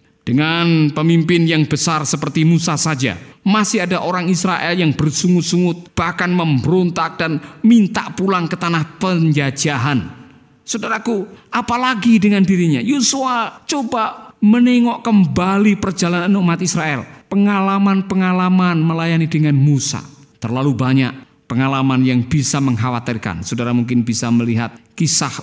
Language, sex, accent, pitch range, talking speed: Indonesian, male, native, 125-175 Hz, 110 wpm